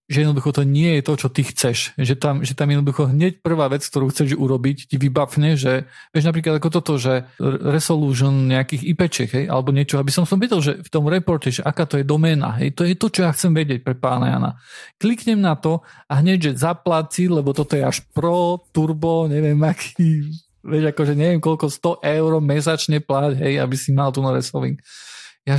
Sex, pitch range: male, 130-160 Hz